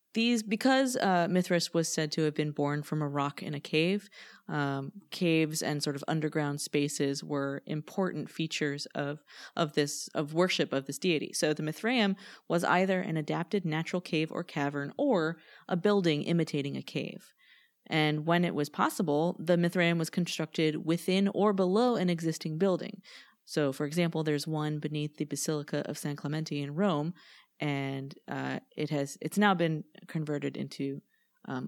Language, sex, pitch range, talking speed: English, female, 150-185 Hz, 170 wpm